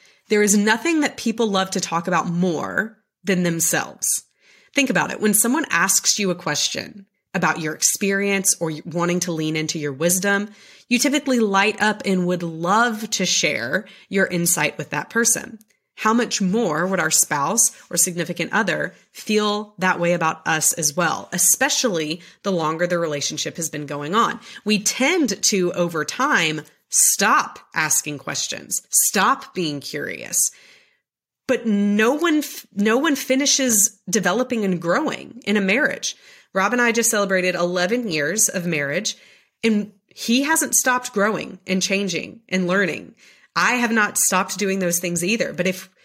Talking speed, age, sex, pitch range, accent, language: 160 wpm, 30-49, female, 175-225 Hz, American, English